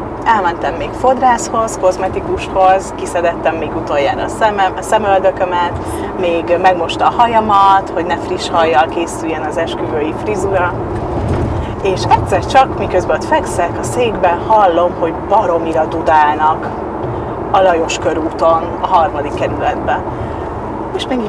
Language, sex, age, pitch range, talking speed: Hungarian, female, 30-49, 170-230 Hz, 120 wpm